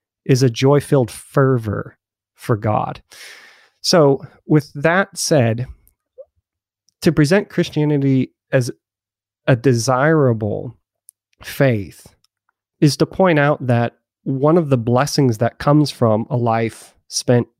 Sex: male